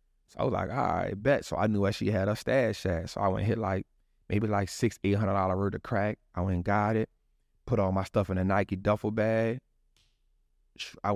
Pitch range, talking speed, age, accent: 90-110 Hz, 245 wpm, 20-39, American